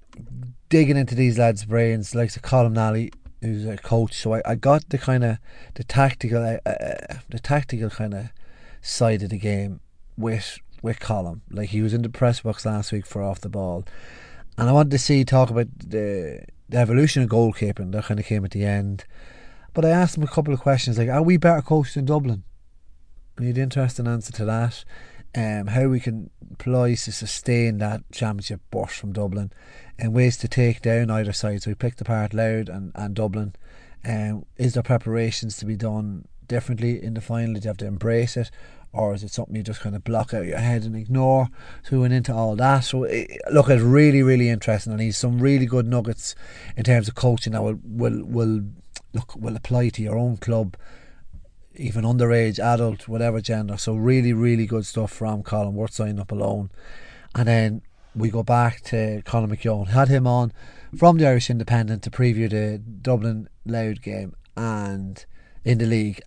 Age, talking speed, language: 30-49, 200 wpm, English